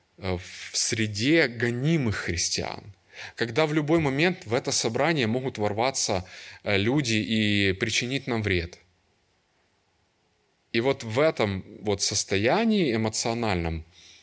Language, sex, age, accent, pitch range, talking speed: Russian, male, 20-39, native, 95-145 Hz, 100 wpm